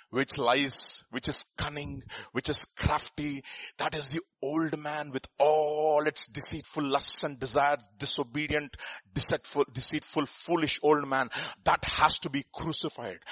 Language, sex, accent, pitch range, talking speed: English, male, Indian, 135-205 Hz, 140 wpm